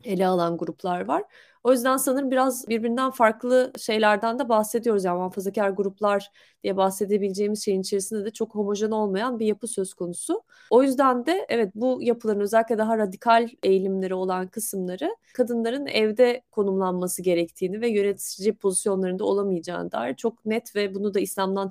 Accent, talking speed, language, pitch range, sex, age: native, 150 wpm, Turkish, 185-225 Hz, female, 30-49